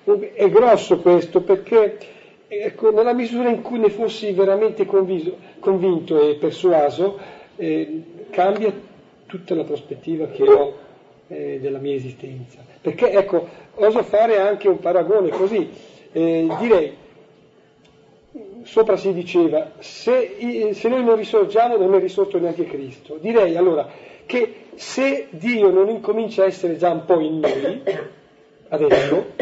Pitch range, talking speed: 150-210 Hz, 135 wpm